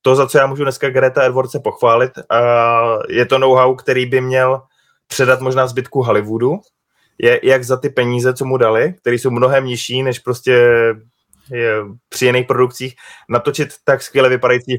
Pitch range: 125-135 Hz